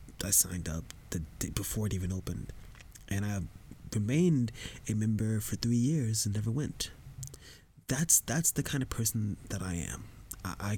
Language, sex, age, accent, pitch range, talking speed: English, male, 20-39, American, 95-125 Hz, 175 wpm